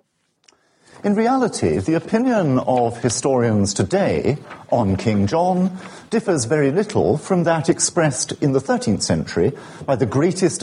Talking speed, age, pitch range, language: 130 wpm, 50-69, 125-195 Hz, English